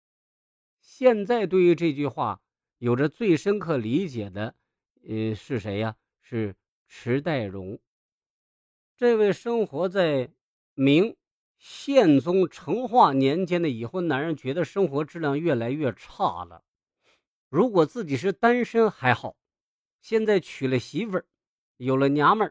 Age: 50-69